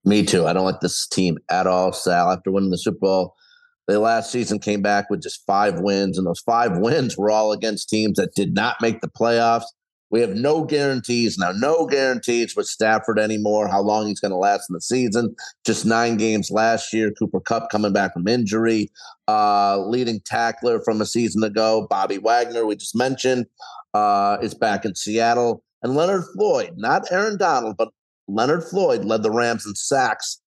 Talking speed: 195 wpm